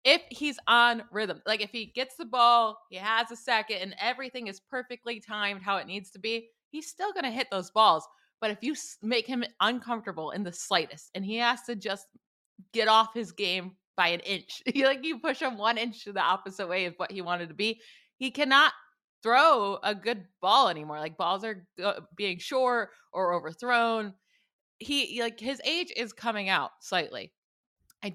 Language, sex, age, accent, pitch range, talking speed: English, female, 20-39, American, 180-235 Hz, 190 wpm